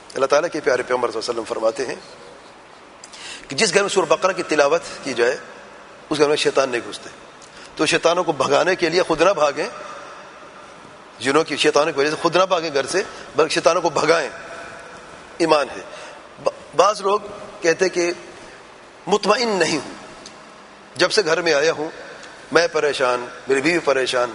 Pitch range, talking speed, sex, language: 160-205 Hz, 165 wpm, male, English